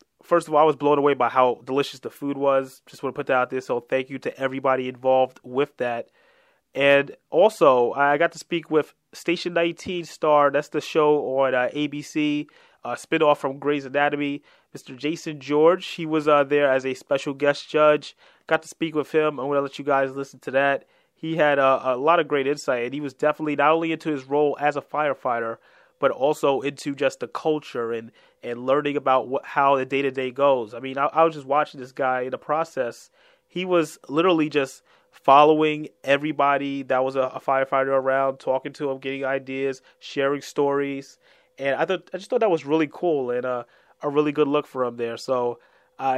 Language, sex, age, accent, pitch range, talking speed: English, male, 30-49, American, 135-155 Hz, 205 wpm